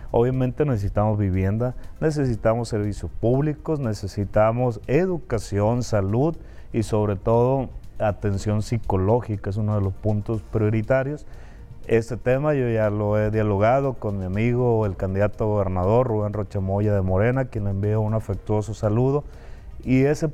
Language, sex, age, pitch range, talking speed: Spanish, male, 30-49, 105-130 Hz, 140 wpm